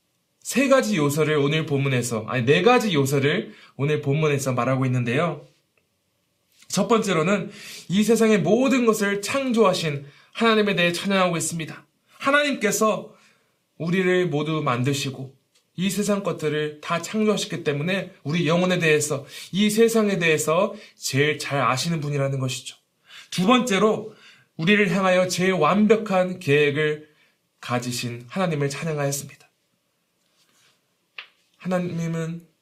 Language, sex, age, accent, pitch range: Korean, male, 20-39, native, 145-205 Hz